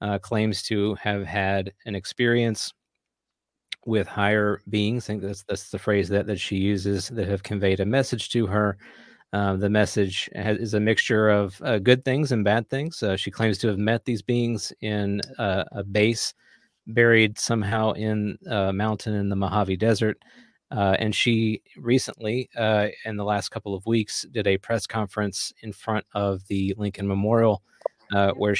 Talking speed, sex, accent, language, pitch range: 175 wpm, male, American, English, 100-115 Hz